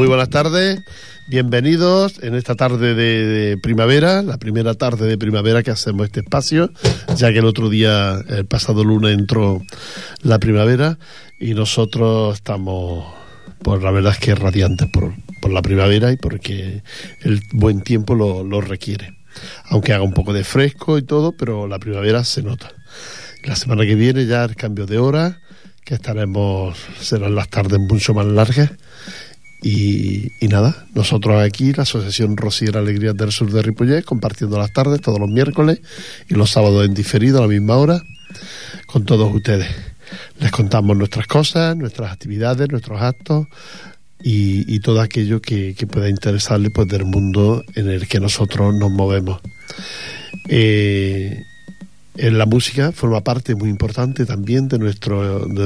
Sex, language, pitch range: male, Portuguese, 105-130 Hz